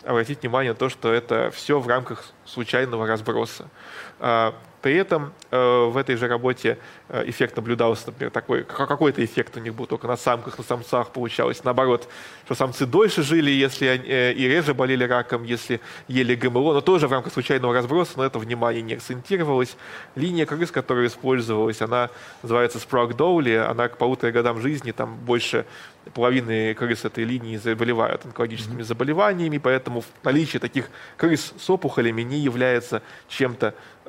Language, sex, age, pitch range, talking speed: Russian, male, 20-39, 120-140 Hz, 160 wpm